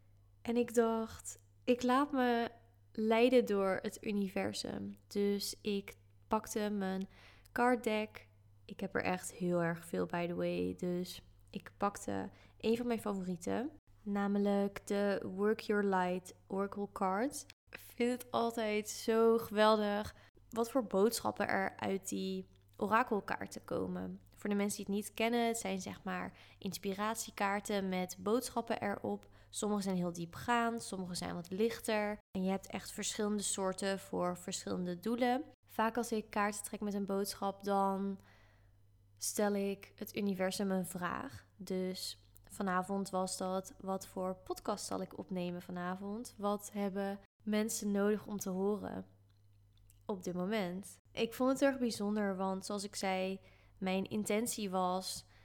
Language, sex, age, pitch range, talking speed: Dutch, female, 20-39, 180-215 Hz, 145 wpm